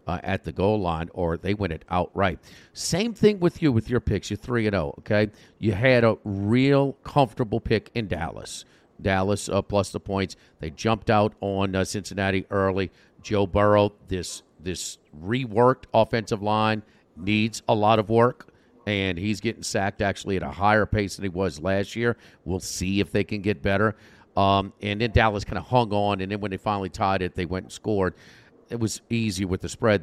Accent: American